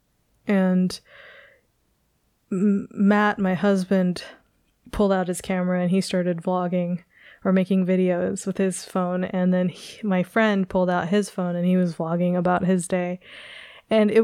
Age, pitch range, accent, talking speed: 20-39, 185-205 Hz, American, 145 wpm